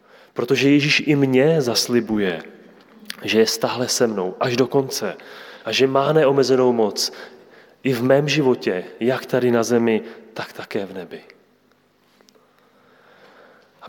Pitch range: 110-140 Hz